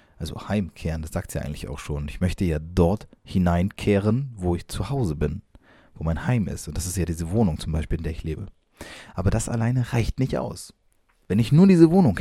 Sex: male